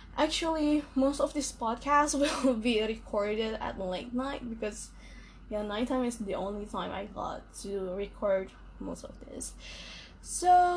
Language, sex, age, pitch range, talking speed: English, female, 10-29, 215-285 Hz, 145 wpm